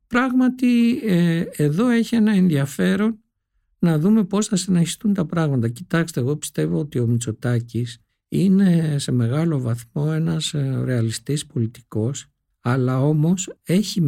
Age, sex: 60-79, male